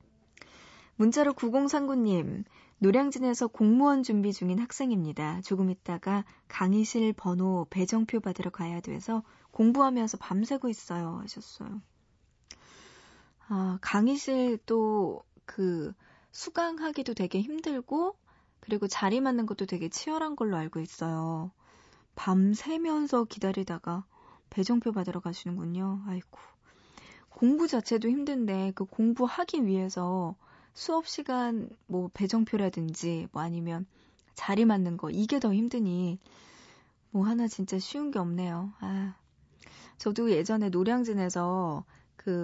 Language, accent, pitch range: Korean, native, 185-255 Hz